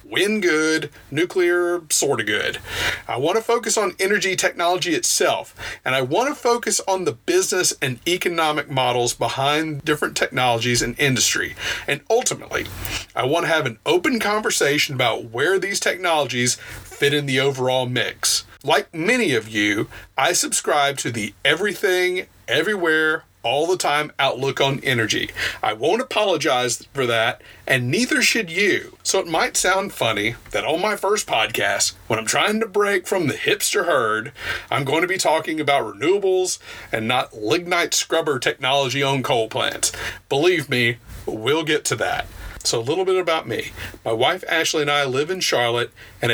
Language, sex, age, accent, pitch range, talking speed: English, male, 40-59, American, 130-200 Hz, 165 wpm